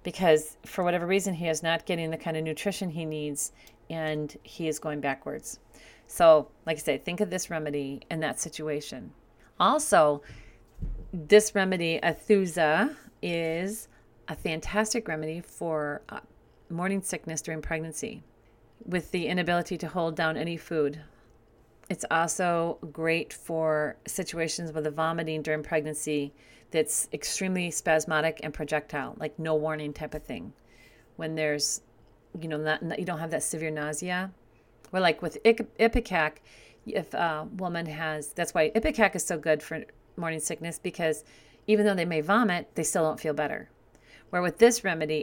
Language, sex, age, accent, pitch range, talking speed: English, female, 40-59, American, 150-175 Hz, 155 wpm